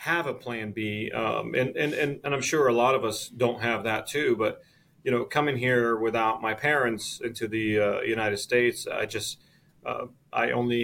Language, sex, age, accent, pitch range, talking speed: English, male, 30-49, American, 110-130 Hz, 205 wpm